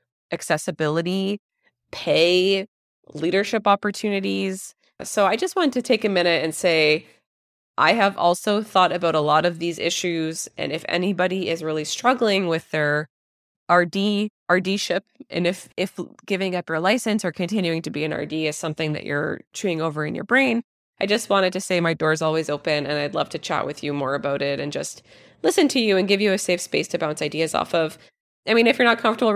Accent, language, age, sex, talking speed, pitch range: American, English, 20-39, female, 200 wpm, 160-195 Hz